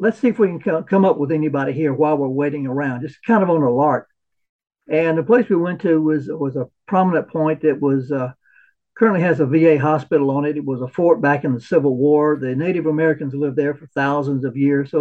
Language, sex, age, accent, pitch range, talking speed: English, male, 60-79, American, 145-180 Hz, 240 wpm